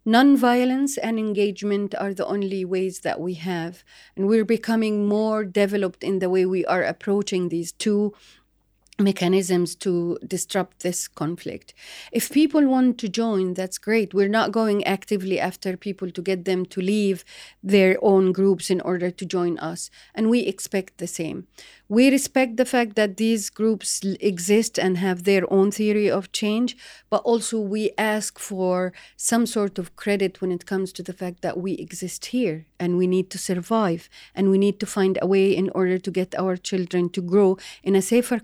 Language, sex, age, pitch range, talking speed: English, female, 40-59, 185-220 Hz, 180 wpm